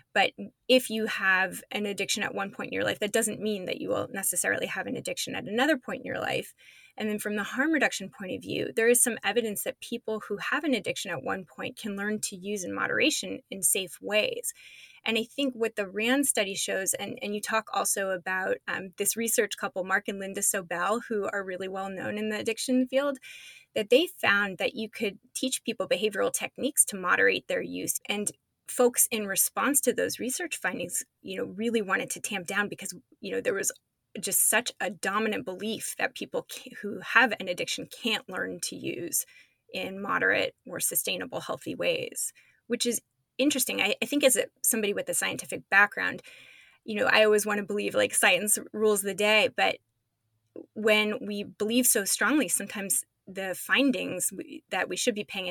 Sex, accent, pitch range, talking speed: female, American, 200-255 Hz, 200 wpm